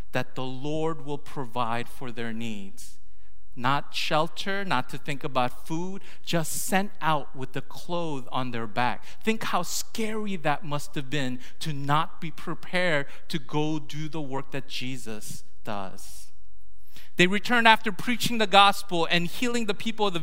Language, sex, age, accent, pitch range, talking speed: English, male, 40-59, American, 150-230 Hz, 165 wpm